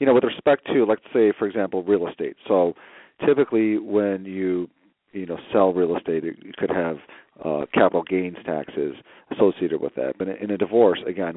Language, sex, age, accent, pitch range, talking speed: English, male, 40-59, American, 85-105 Hz, 185 wpm